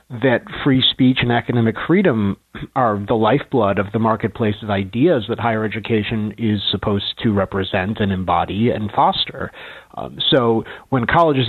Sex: male